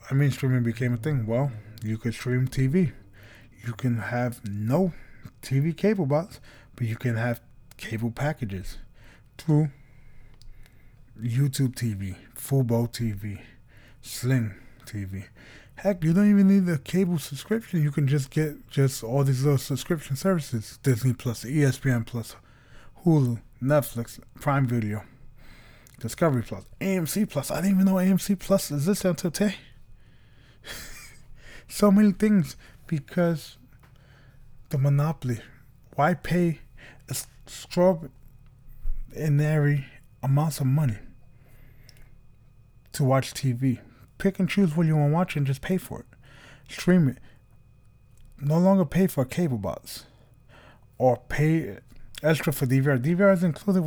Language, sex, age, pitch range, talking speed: English, male, 20-39, 120-150 Hz, 125 wpm